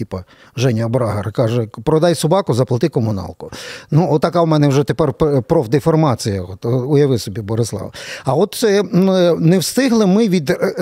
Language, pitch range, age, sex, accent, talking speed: Ukrainian, 120-155 Hz, 40-59, male, native, 135 wpm